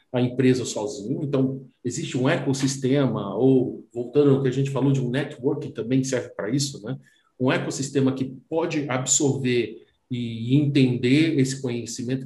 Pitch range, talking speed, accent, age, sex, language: 125-160 Hz, 150 wpm, Brazilian, 50-69, male, Portuguese